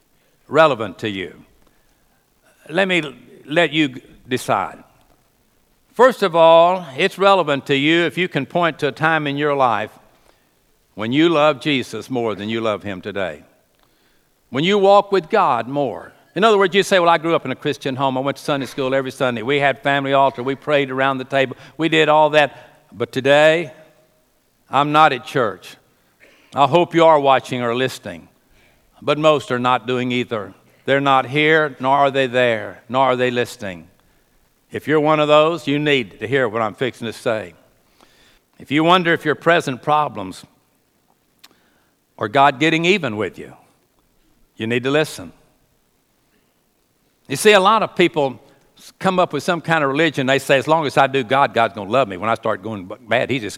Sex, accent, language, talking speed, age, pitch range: male, American, English, 190 wpm, 60-79, 130-160 Hz